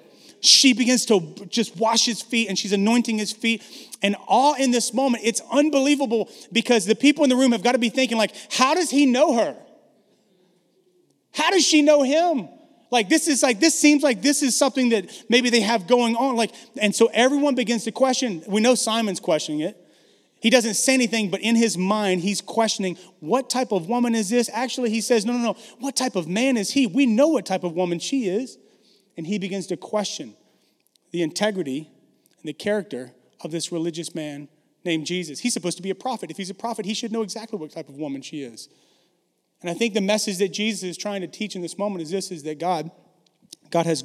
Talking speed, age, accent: 220 wpm, 30-49, American